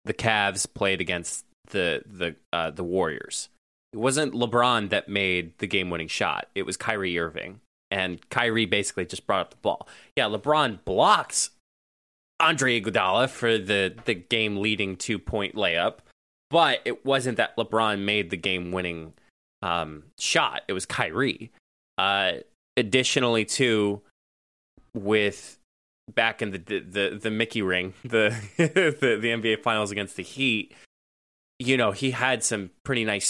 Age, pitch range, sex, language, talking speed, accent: 20-39, 95-120 Hz, male, English, 145 wpm, American